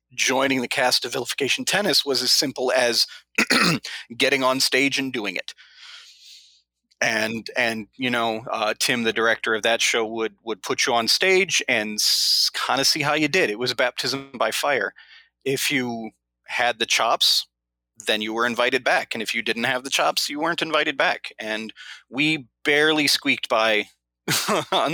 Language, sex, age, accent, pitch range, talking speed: English, male, 30-49, American, 100-130 Hz, 175 wpm